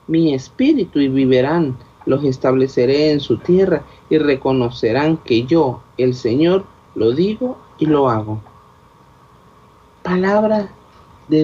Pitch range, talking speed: 135-190 Hz, 115 wpm